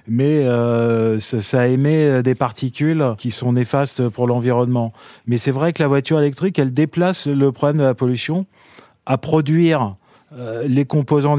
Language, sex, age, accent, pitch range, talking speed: French, male, 30-49, French, 125-150 Hz, 160 wpm